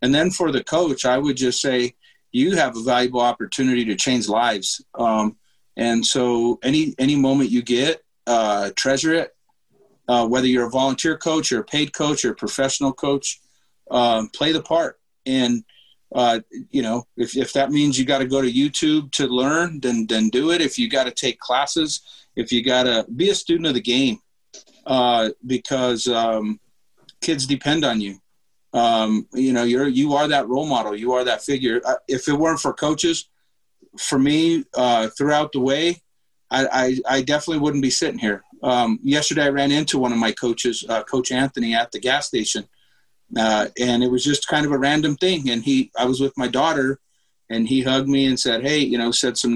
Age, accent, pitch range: 40-59, American, 120-140 Hz